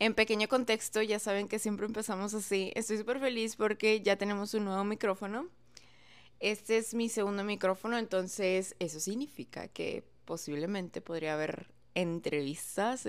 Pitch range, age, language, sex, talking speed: 170-210 Hz, 20-39, Spanish, female, 140 wpm